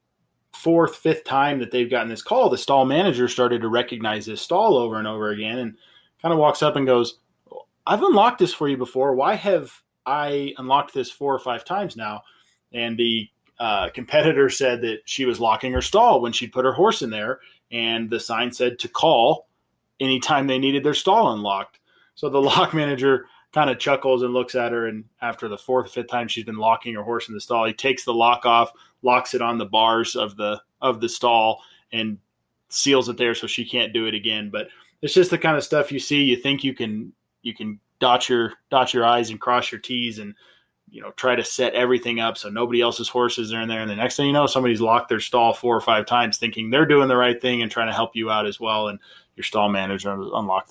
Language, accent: English, American